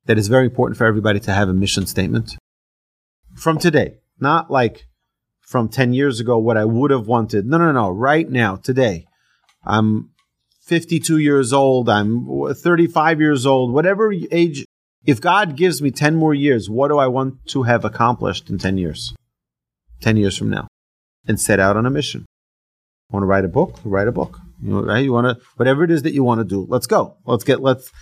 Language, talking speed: English, 200 wpm